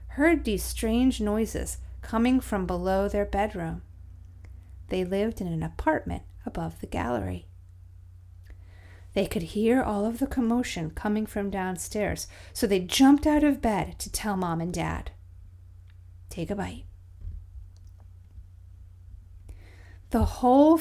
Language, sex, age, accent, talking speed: English, female, 40-59, American, 125 wpm